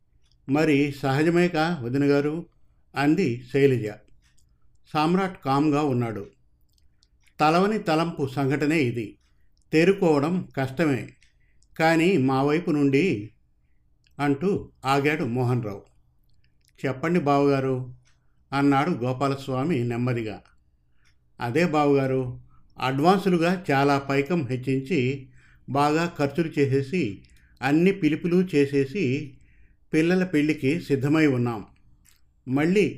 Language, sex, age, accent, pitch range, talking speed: Telugu, male, 50-69, native, 115-155 Hz, 80 wpm